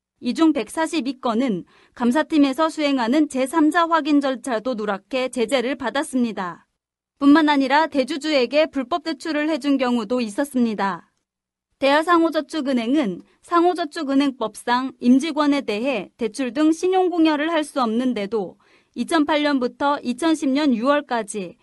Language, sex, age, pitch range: Korean, female, 30-49, 245-315 Hz